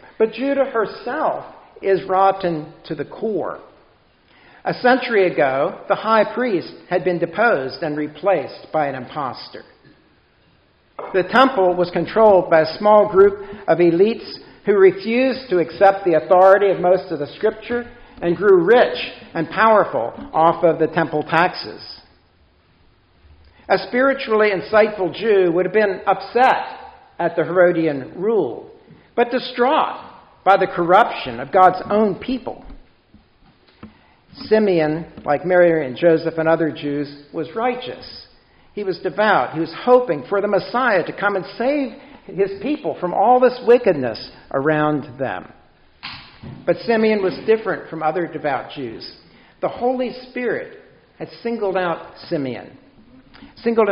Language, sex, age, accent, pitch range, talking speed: English, male, 60-79, American, 165-235 Hz, 135 wpm